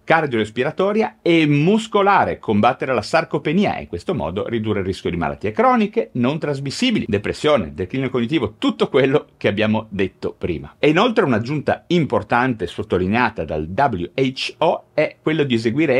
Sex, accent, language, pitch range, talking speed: male, native, Italian, 95-130 Hz, 145 wpm